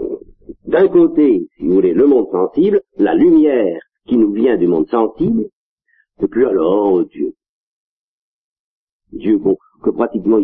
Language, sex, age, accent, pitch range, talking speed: French, male, 50-69, French, 305-390 Hz, 145 wpm